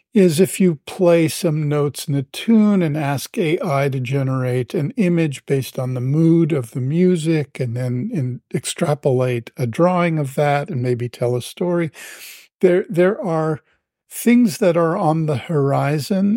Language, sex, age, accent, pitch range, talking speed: English, male, 50-69, American, 130-170 Hz, 165 wpm